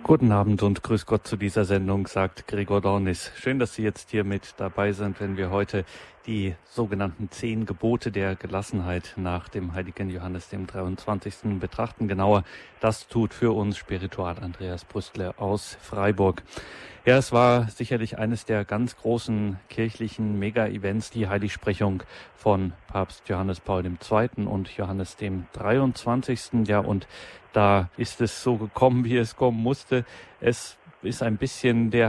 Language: German